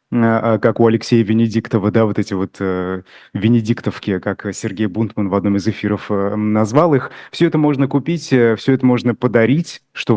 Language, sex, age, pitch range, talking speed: Russian, male, 30-49, 105-130 Hz, 170 wpm